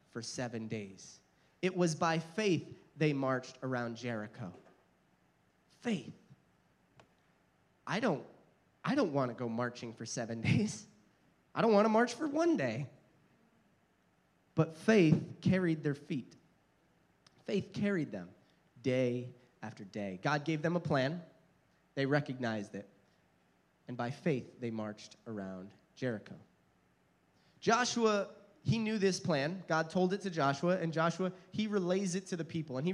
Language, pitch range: English, 130-195 Hz